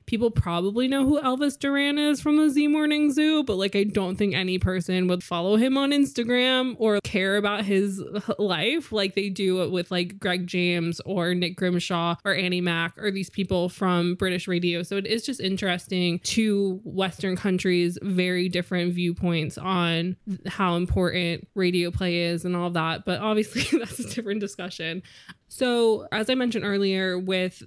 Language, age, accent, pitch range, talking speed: English, 20-39, American, 175-210 Hz, 175 wpm